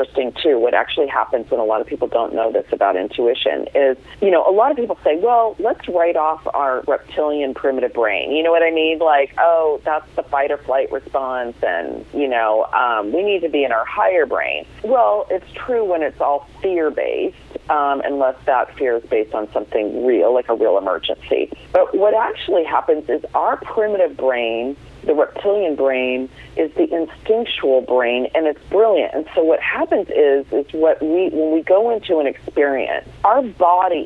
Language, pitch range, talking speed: English, 145-225 Hz, 185 wpm